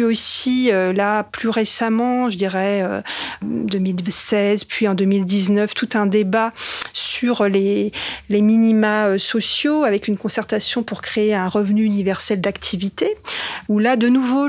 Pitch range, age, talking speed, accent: 195-225 Hz, 40-59, 140 wpm, French